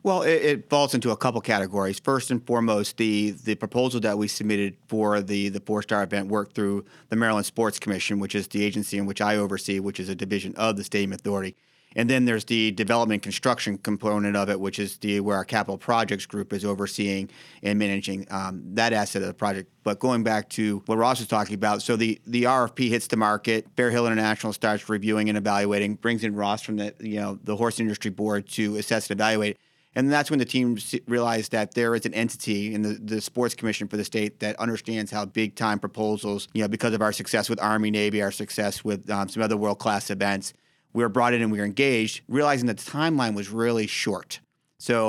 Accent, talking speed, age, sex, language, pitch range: American, 220 wpm, 40-59, male, English, 100-115 Hz